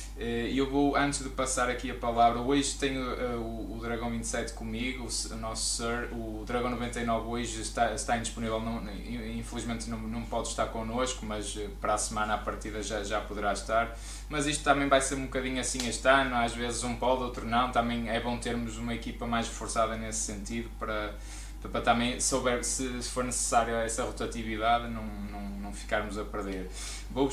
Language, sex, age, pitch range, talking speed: Portuguese, male, 20-39, 110-120 Hz, 185 wpm